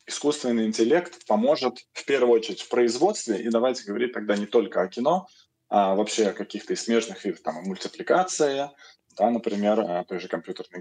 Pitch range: 105-125 Hz